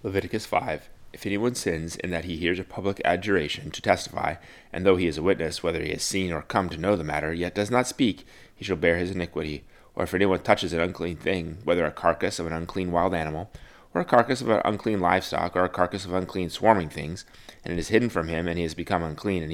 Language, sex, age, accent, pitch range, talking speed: English, male, 30-49, American, 85-105 Hz, 245 wpm